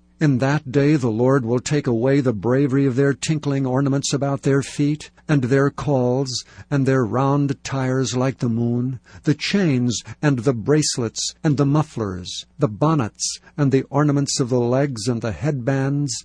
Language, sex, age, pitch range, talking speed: English, male, 60-79, 120-145 Hz, 170 wpm